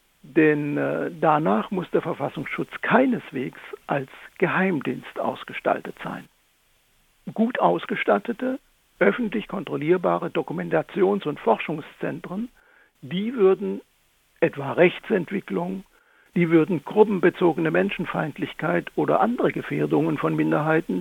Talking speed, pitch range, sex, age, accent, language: 85 wpm, 155-210 Hz, male, 60-79, German, German